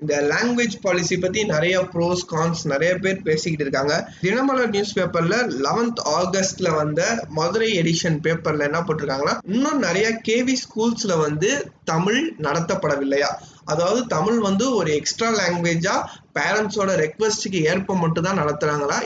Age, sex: 20-39, male